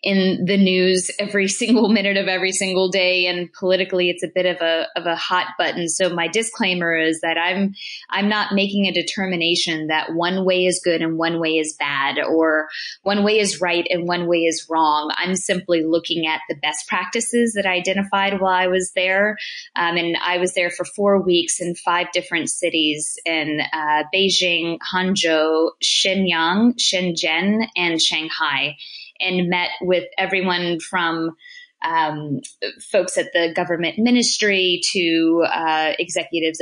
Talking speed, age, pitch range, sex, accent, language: 165 wpm, 20-39, 165-195 Hz, female, American, English